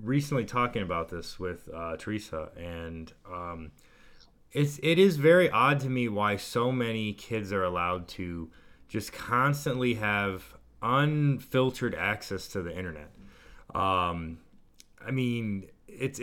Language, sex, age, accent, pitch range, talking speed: English, male, 30-49, American, 90-130 Hz, 135 wpm